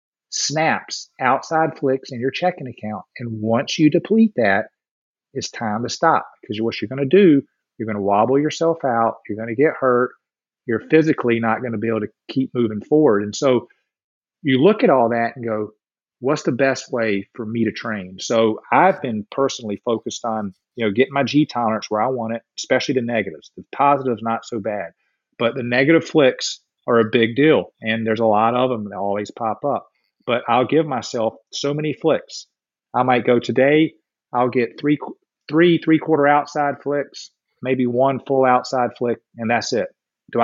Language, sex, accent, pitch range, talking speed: English, male, American, 115-150 Hz, 195 wpm